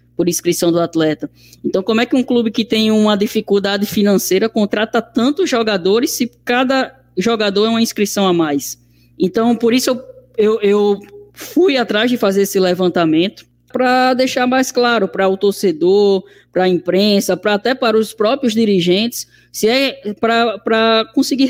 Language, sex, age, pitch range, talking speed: Portuguese, female, 10-29, 180-230 Hz, 160 wpm